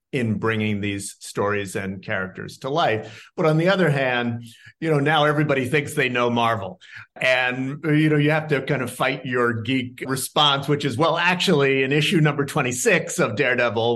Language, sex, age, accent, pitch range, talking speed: English, male, 50-69, American, 110-140 Hz, 185 wpm